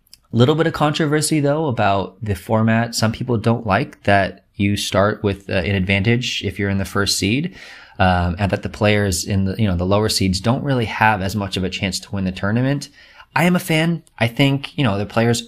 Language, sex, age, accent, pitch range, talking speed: English, male, 20-39, American, 95-120 Hz, 230 wpm